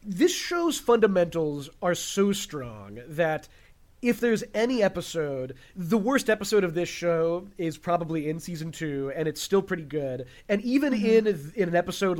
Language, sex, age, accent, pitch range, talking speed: English, male, 30-49, American, 155-195 Hz, 160 wpm